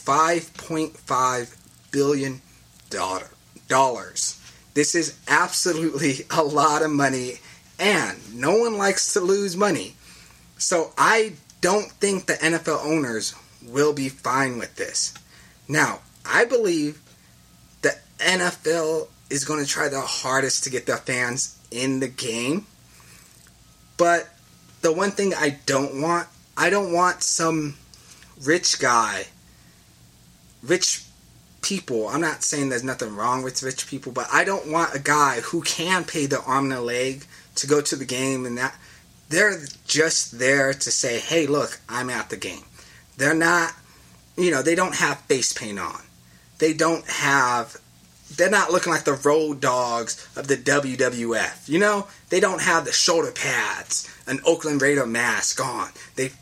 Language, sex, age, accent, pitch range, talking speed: English, male, 30-49, American, 120-165 Hz, 150 wpm